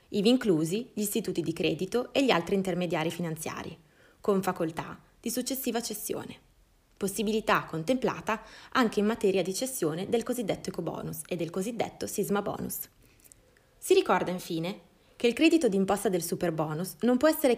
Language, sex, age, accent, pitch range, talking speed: Italian, female, 20-39, native, 170-215 Hz, 150 wpm